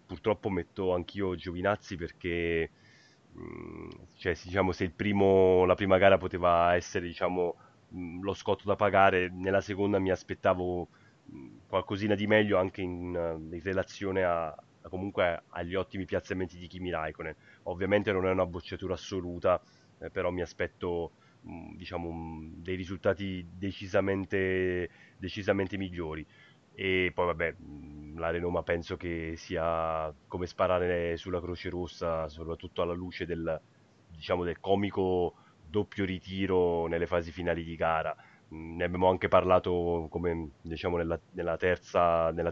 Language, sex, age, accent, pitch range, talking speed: Italian, male, 30-49, native, 85-95 Hz, 115 wpm